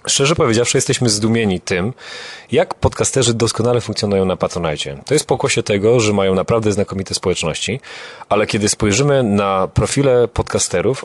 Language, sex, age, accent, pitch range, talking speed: Polish, male, 30-49, native, 95-125 Hz, 140 wpm